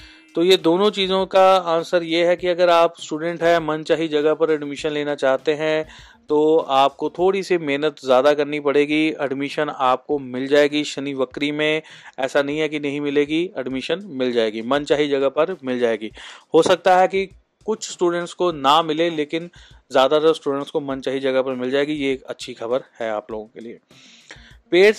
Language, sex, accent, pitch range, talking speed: Hindi, male, native, 135-160 Hz, 185 wpm